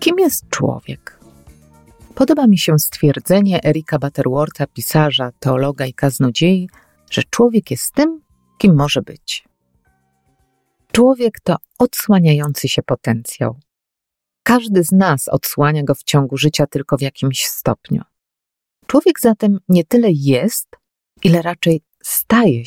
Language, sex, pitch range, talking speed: Polish, female, 135-200 Hz, 120 wpm